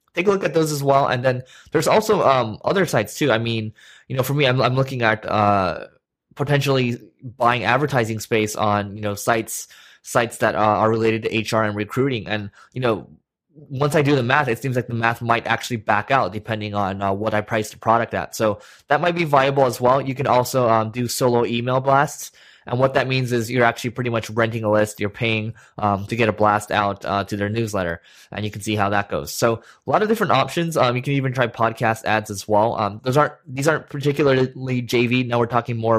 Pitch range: 110-135 Hz